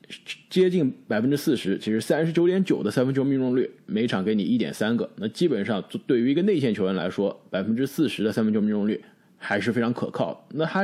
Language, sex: Chinese, male